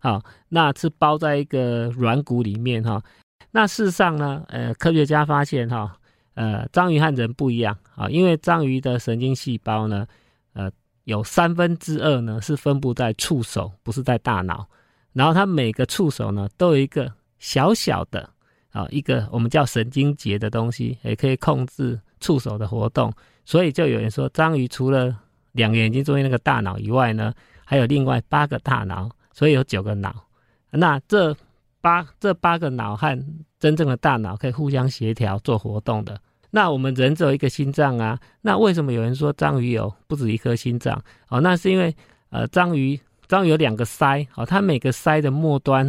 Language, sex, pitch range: Chinese, male, 115-150 Hz